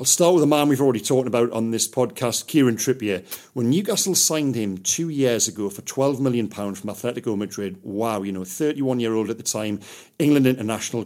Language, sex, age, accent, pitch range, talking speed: English, male, 40-59, British, 110-145 Hz, 205 wpm